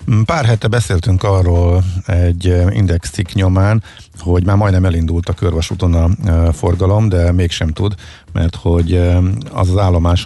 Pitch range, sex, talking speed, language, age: 85-100 Hz, male, 135 wpm, Hungarian, 50-69